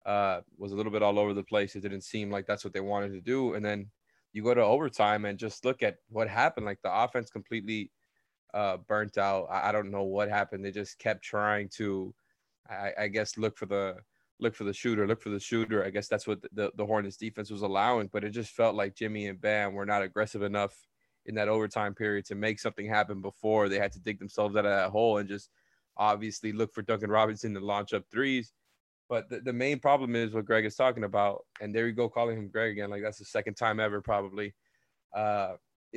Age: 20-39